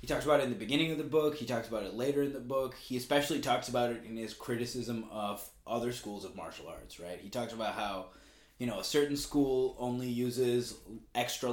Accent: American